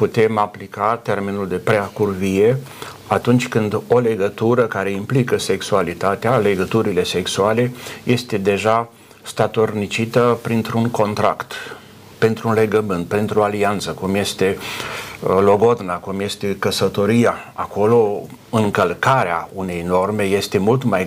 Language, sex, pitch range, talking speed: Romanian, male, 100-115 Hz, 110 wpm